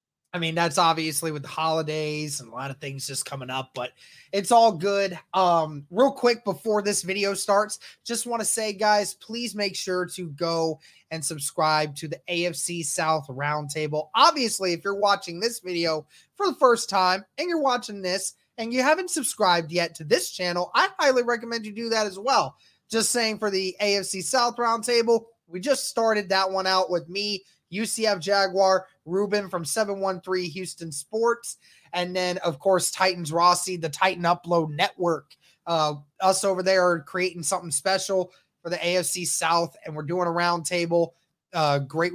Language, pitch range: English, 160-205 Hz